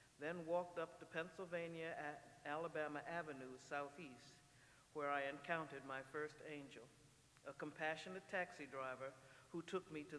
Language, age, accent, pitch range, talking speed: English, 60-79, American, 135-170 Hz, 135 wpm